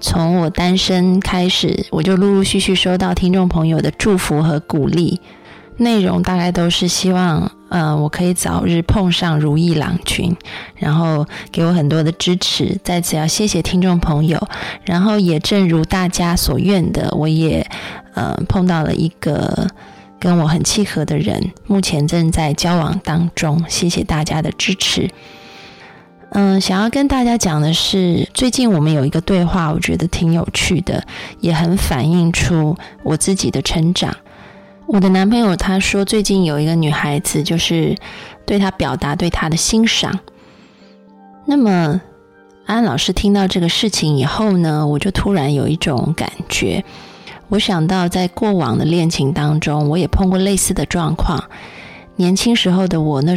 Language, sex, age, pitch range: Chinese, female, 20-39, 155-190 Hz